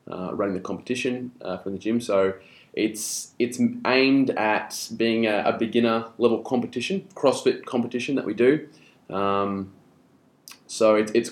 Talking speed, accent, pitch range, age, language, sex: 150 wpm, Australian, 100-120 Hz, 20-39, English, male